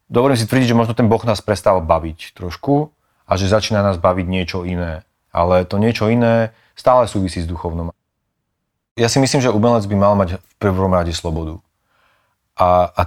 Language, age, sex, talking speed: Slovak, 30-49, male, 185 wpm